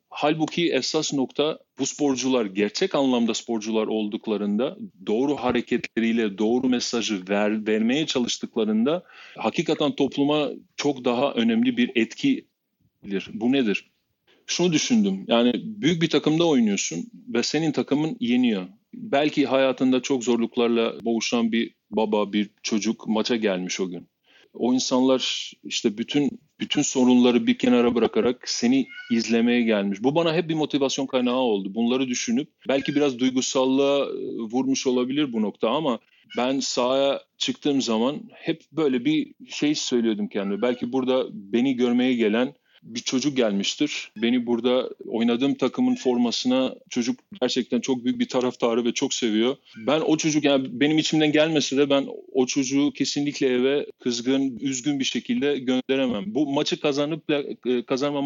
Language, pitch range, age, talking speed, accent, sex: Turkish, 120-155 Hz, 40-59, 135 wpm, native, male